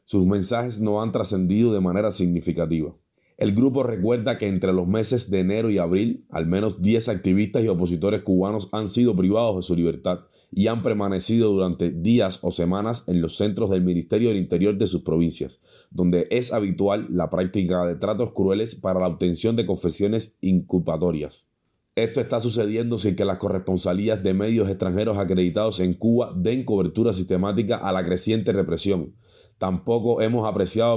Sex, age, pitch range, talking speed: male, 30-49, 90-110 Hz, 165 wpm